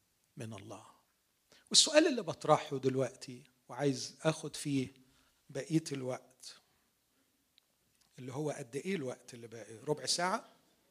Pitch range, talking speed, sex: 130-175 Hz, 110 wpm, male